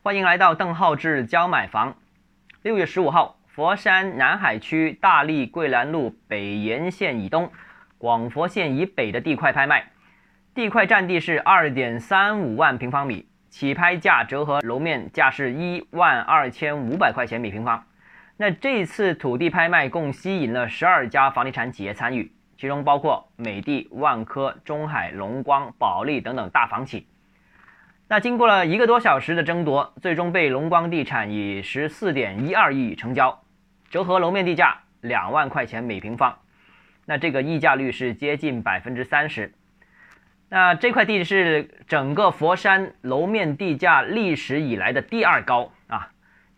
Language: Chinese